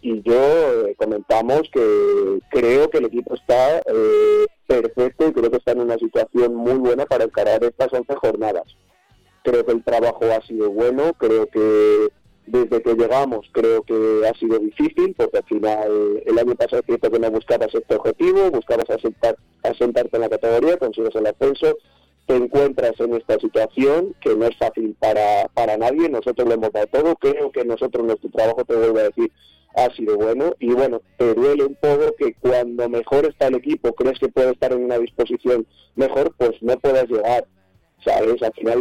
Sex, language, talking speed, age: male, Spanish, 185 wpm, 40-59